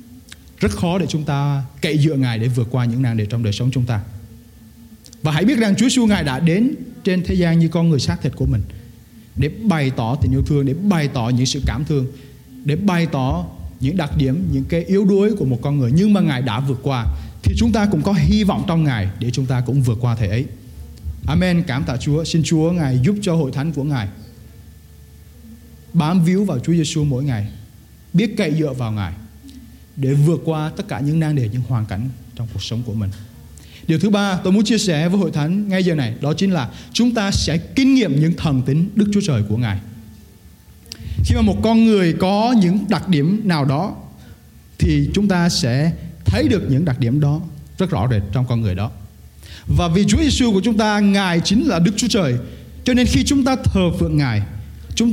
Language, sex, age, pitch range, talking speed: Vietnamese, male, 20-39, 115-180 Hz, 225 wpm